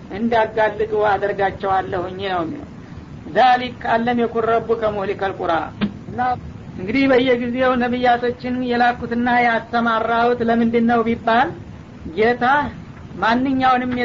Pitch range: 225-245 Hz